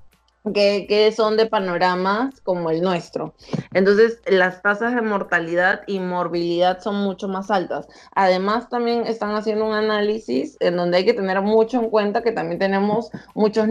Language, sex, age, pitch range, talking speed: Spanish, female, 20-39, 175-215 Hz, 160 wpm